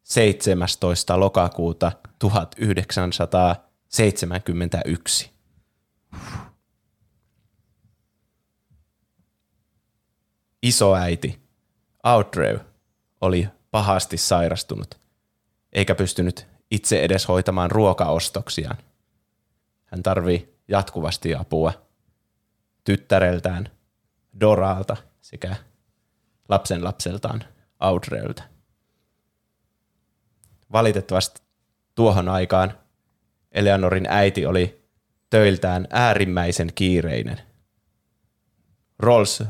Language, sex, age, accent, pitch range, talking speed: Finnish, male, 20-39, native, 90-105 Hz, 50 wpm